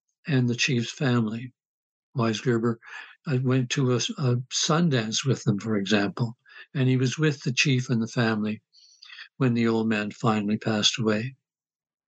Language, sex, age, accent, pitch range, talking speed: English, male, 60-79, American, 120-155 Hz, 150 wpm